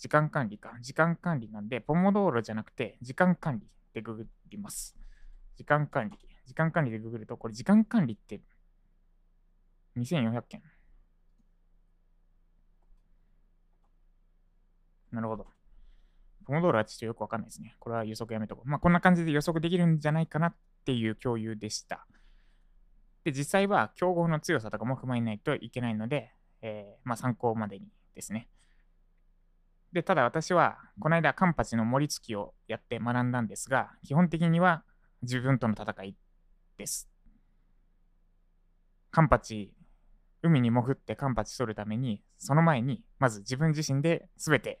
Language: Japanese